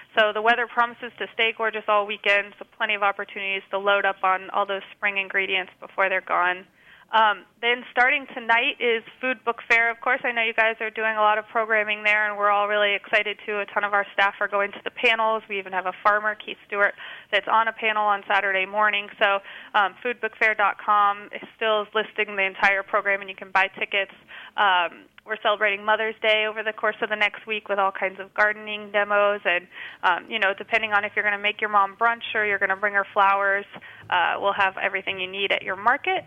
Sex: female